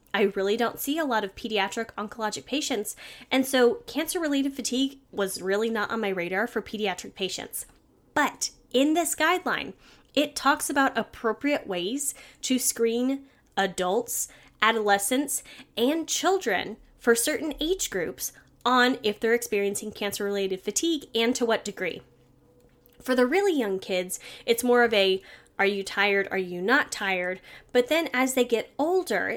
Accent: American